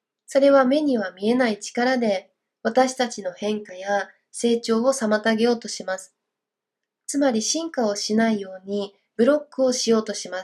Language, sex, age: Japanese, female, 20-39